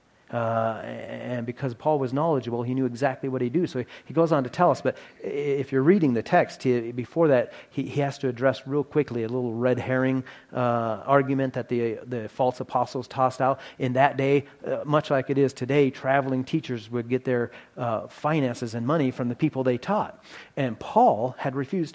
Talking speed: 205 wpm